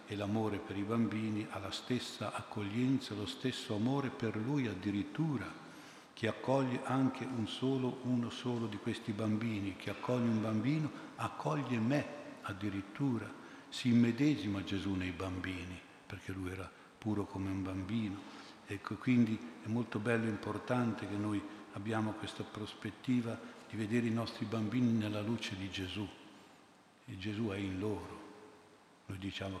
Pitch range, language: 95-115 Hz, Italian